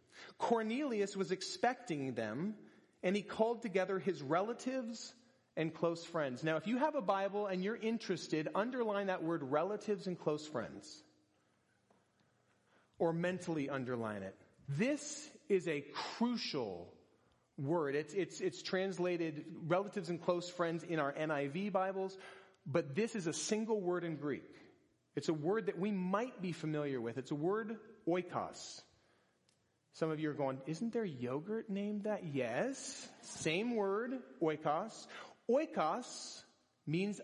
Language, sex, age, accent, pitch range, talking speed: English, male, 30-49, American, 170-230 Hz, 140 wpm